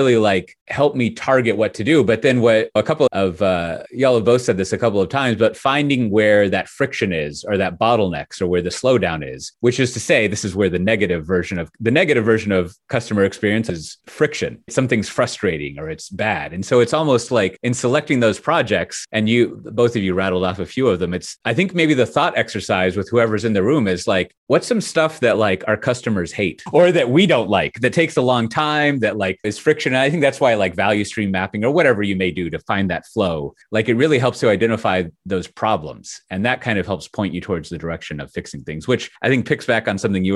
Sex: male